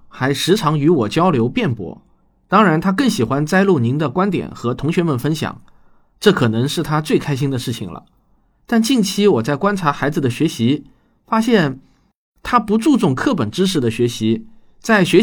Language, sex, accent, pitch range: Chinese, male, native, 130-195 Hz